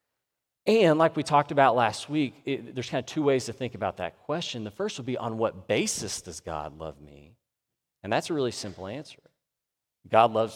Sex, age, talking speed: male, 30-49, 205 wpm